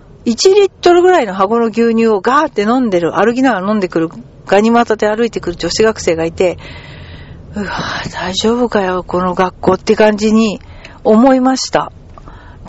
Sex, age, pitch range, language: female, 40-59, 195-310 Hz, Japanese